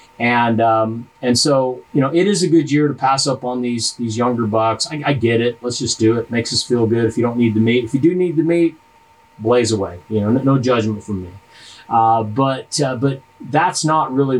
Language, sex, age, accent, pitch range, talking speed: English, male, 30-49, American, 105-135 Hz, 250 wpm